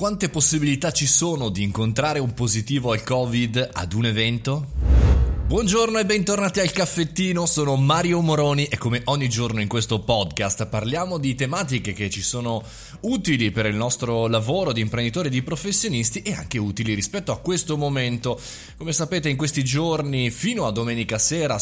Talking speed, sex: 165 wpm, male